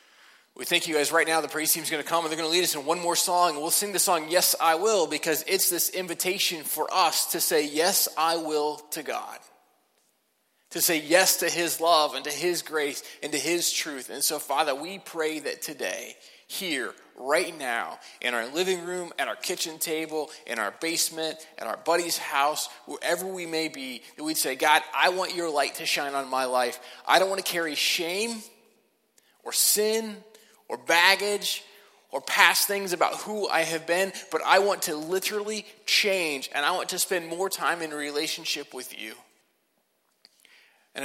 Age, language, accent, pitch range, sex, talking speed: 20-39, English, American, 155-185 Hz, male, 195 wpm